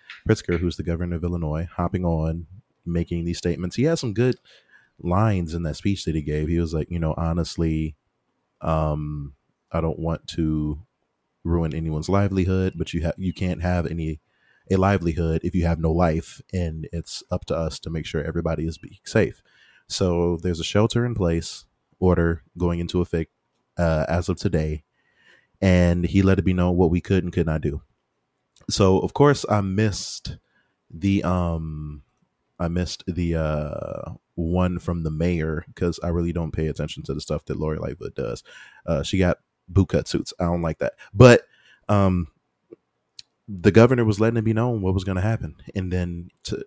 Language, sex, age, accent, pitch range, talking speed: English, male, 30-49, American, 80-95 Hz, 185 wpm